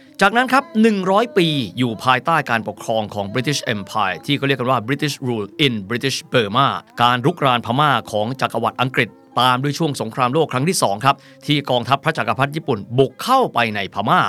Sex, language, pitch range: male, Thai, 115-160 Hz